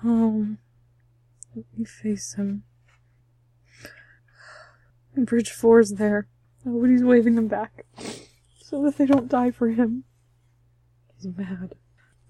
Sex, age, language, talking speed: female, 20-39, English, 110 wpm